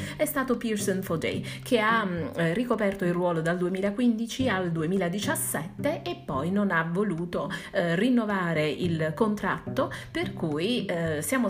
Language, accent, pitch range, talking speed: Italian, native, 170-230 Hz, 140 wpm